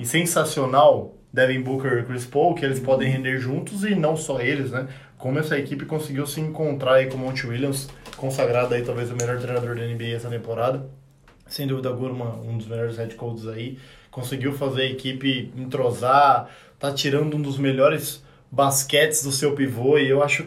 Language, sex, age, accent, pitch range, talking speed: Portuguese, male, 20-39, Brazilian, 130-150 Hz, 190 wpm